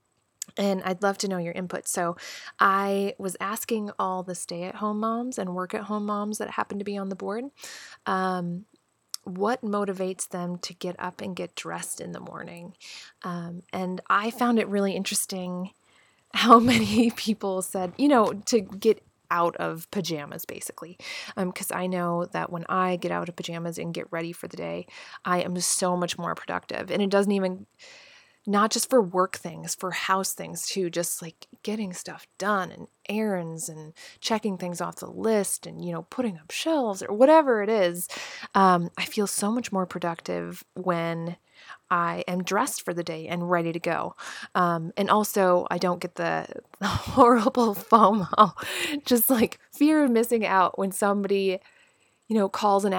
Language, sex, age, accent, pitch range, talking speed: English, female, 20-39, American, 175-215 Hz, 175 wpm